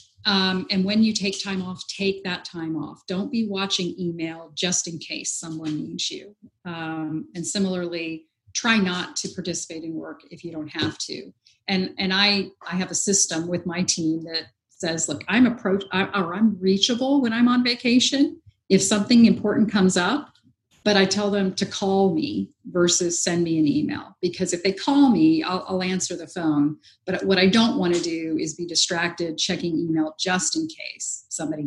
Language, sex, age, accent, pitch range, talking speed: English, female, 40-59, American, 170-220 Hz, 190 wpm